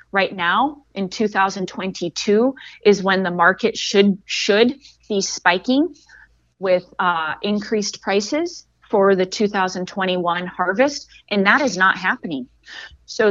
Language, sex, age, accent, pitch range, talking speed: English, female, 30-49, American, 180-225 Hz, 115 wpm